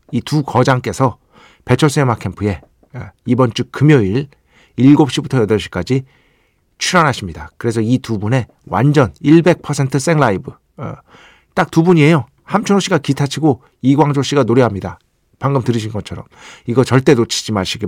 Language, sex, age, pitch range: Korean, male, 40-59, 115-155 Hz